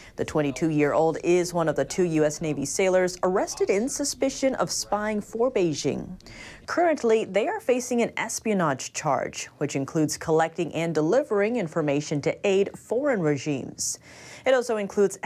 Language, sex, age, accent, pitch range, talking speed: English, female, 30-49, American, 155-225 Hz, 145 wpm